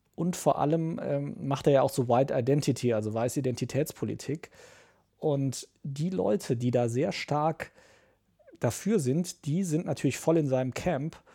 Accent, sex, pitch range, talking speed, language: German, male, 125-150 Hz, 160 wpm, German